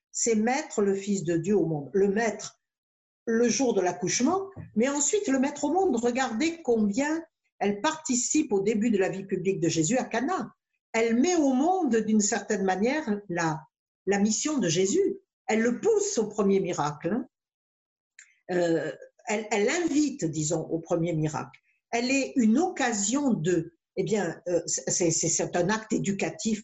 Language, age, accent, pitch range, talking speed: French, 50-69, French, 185-265 Hz, 165 wpm